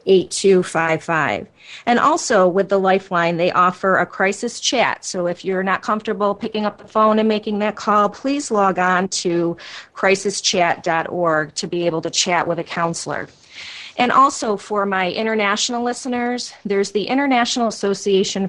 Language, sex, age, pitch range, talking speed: English, female, 30-49, 175-215 Hz, 155 wpm